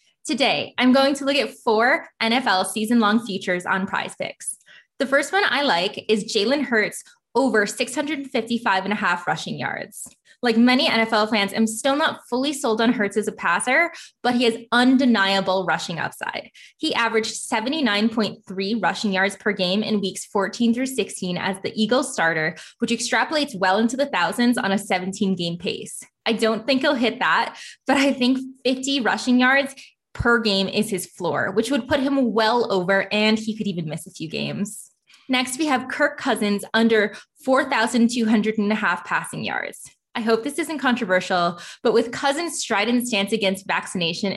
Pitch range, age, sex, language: 195-255 Hz, 20-39, female, English